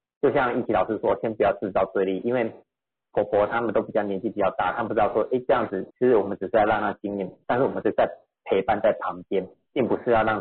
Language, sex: Chinese, male